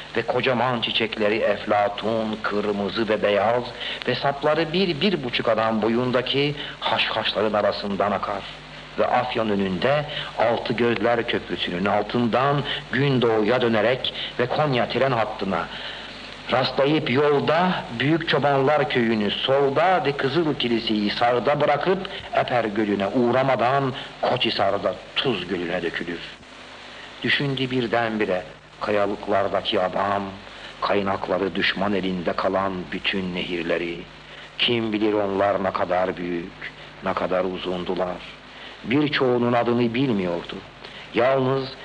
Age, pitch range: 60-79, 105-130 Hz